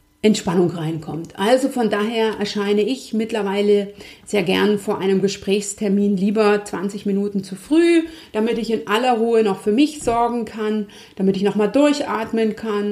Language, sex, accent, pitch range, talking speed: German, female, German, 190-235 Hz, 155 wpm